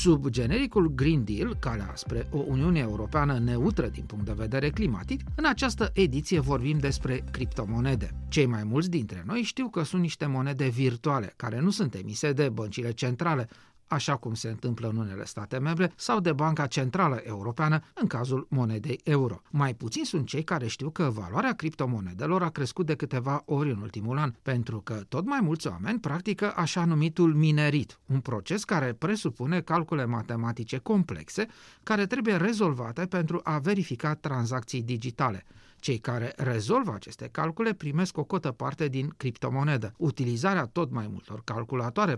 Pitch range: 120-170 Hz